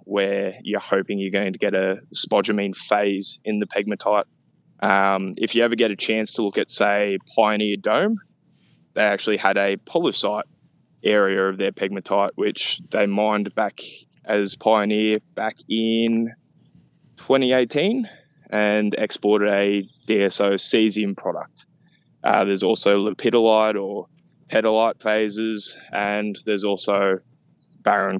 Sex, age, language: male, 20-39, English